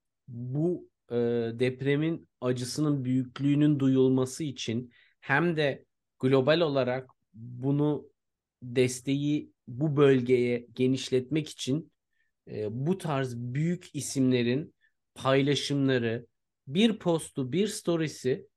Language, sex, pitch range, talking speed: Turkish, male, 125-150 Hz, 80 wpm